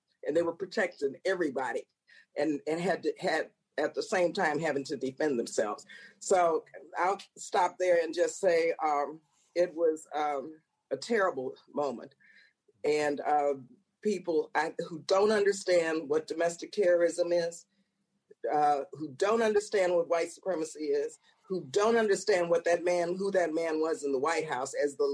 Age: 50-69